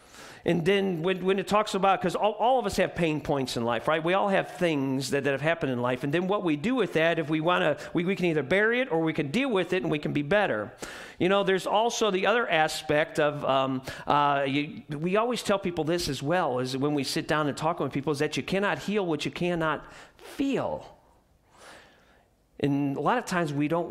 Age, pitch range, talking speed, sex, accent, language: 40-59, 155-220 Hz, 245 wpm, male, American, English